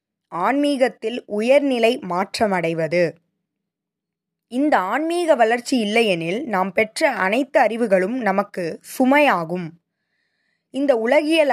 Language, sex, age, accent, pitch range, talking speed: Tamil, female, 20-39, native, 185-260 Hz, 80 wpm